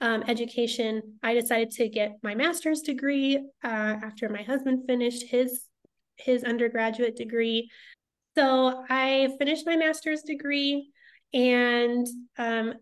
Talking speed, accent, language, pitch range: 120 wpm, American, English, 230-260 Hz